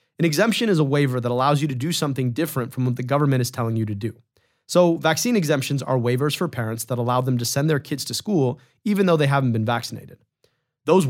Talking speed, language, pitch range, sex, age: 240 wpm, English, 125-175 Hz, male, 30-49